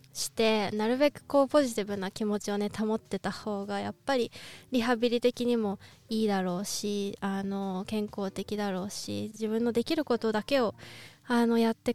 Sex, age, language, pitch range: female, 20-39, Japanese, 210-275 Hz